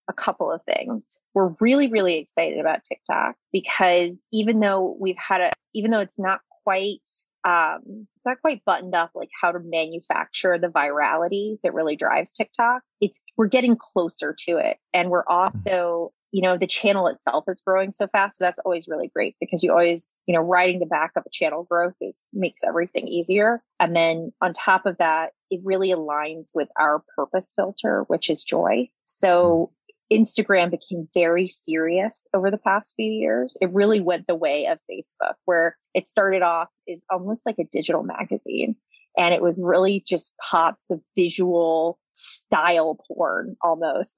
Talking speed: 175 wpm